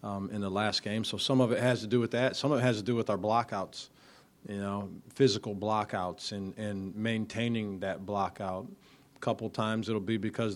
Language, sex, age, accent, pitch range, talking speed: English, male, 40-59, American, 100-120 Hz, 215 wpm